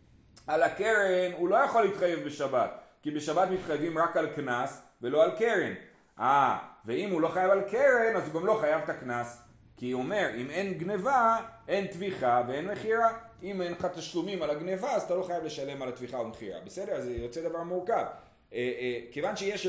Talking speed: 195 wpm